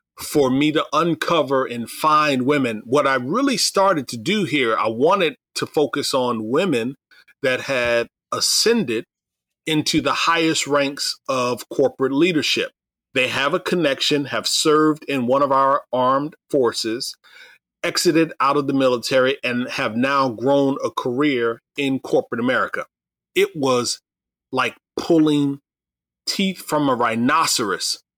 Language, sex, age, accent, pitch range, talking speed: English, male, 40-59, American, 125-155 Hz, 135 wpm